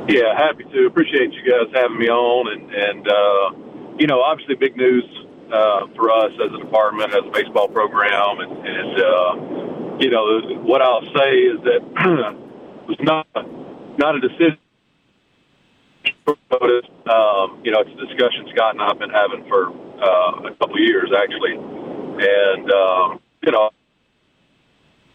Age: 50-69